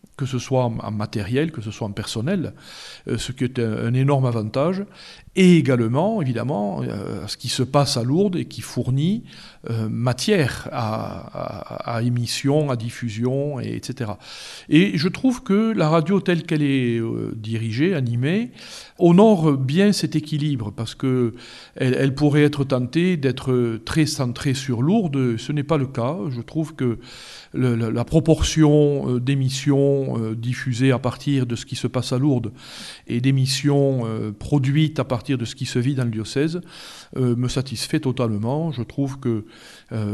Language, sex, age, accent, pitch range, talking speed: French, male, 40-59, French, 120-150 Hz, 180 wpm